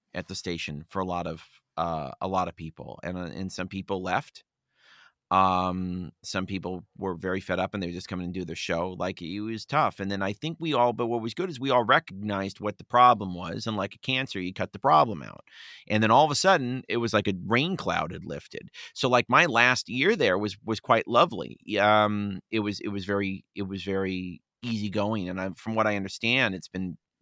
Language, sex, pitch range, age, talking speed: English, male, 90-110 Hz, 30-49, 240 wpm